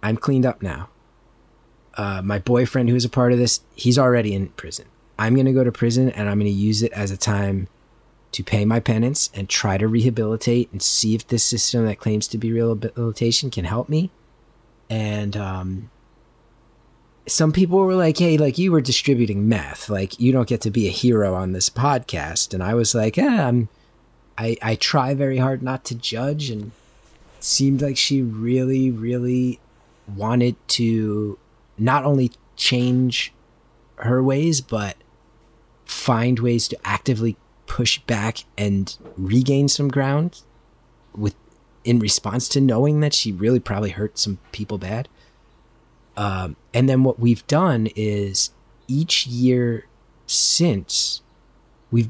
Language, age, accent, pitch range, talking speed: English, 30-49, American, 105-130 Hz, 160 wpm